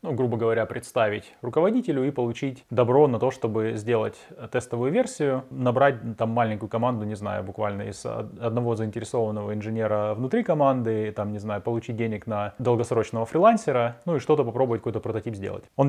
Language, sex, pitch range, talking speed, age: Russian, male, 110-130 Hz, 160 wpm, 20-39